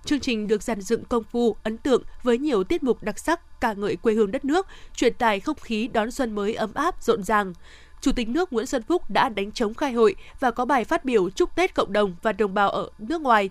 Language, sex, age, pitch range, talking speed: Vietnamese, female, 20-39, 210-275 Hz, 260 wpm